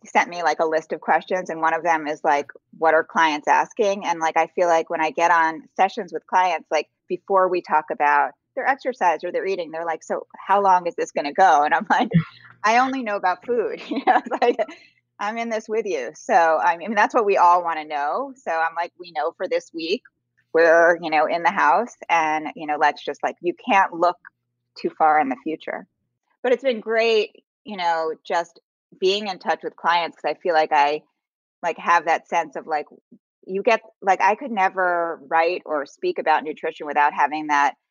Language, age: English, 20-39